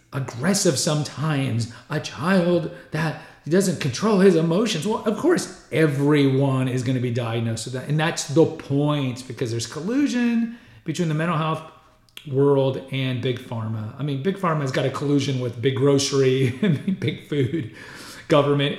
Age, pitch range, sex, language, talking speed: 40-59, 125-175 Hz, male, English, 155 wpm